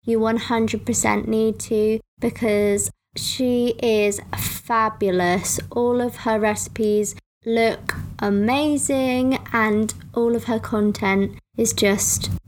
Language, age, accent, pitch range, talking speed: English, 20-39, British, 200-235 Hz, 100 wpm